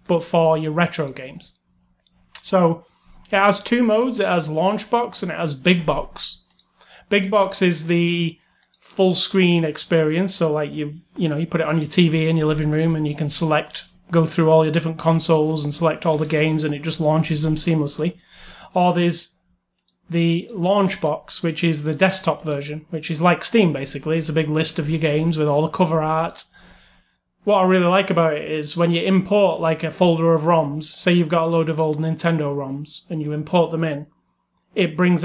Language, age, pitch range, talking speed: English, 30-49, 155-180 Hz, 195 wpm